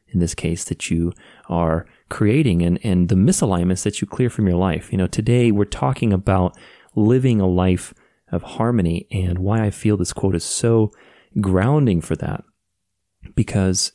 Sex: male